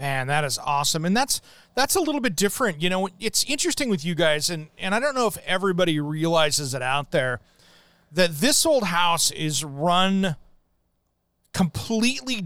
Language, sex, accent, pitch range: English, male, American, 150-195 Hz